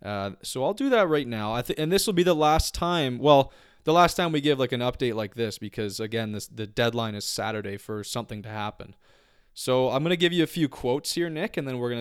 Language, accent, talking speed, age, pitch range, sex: English, American, 265 wpm, 20-39, 110-150 Hz, male